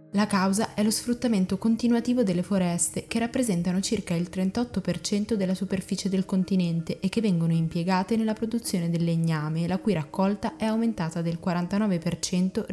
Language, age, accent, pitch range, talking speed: Italian, 20-39, native, 165-200 Hz, 150 wpm